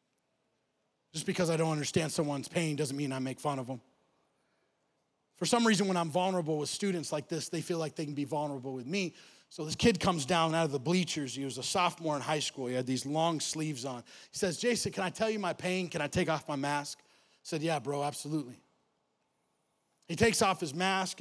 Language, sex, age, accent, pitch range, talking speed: English, male, 30-49, American, 145-190 Hz, 225 wpm